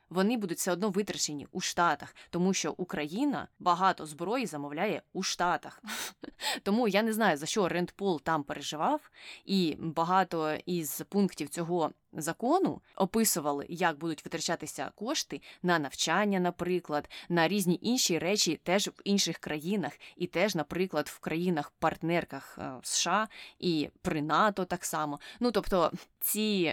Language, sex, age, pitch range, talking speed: Ukrainian, female, 20-39, 160-205 Hz, 135 wpm